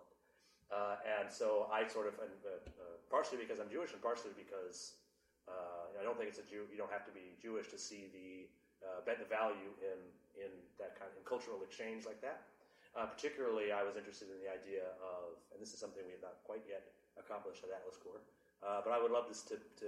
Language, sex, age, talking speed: English, male, 30-49, 230 wpm